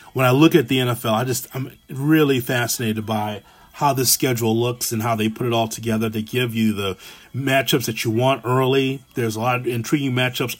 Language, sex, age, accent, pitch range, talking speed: English, male, 30-49, American, 115-140 Hz, 215 wpm